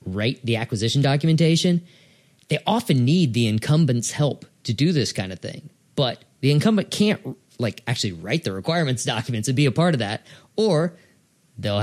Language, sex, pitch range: English, male, 110-150 Hz